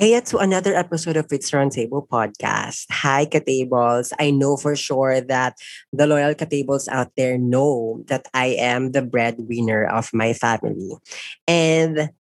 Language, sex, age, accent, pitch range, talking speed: Filipino, female, 20-39, native, 125-155 Hz, 155 wpm